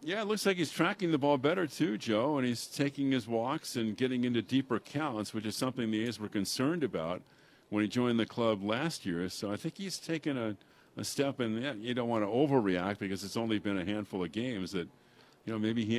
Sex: male